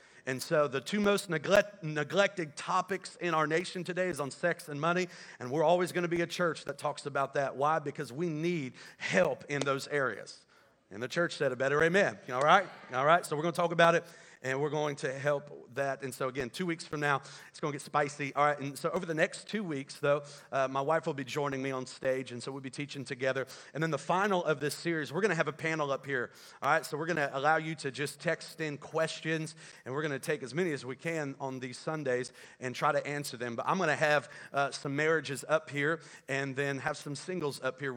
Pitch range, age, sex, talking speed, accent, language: 135-160 Hz, 40-59, male, 255 wpm, American, English